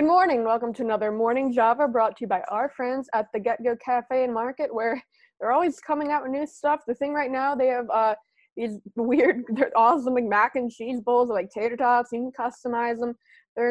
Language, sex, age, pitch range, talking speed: English, female, 20-39, 230-275 Hz, 230 wpm